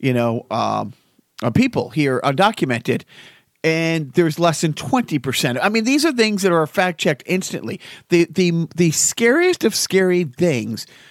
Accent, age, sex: American, 40-59, male